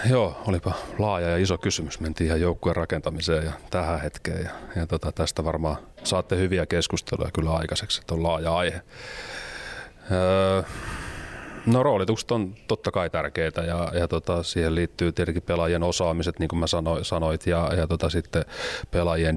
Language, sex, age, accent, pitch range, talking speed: Finnish, male, 30-49, native, 80-90 Hz, 160 wpm